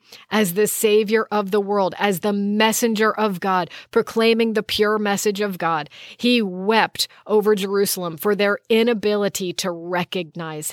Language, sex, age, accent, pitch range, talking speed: English, female, 40-59, American, 195-230 Hz, 145 wpm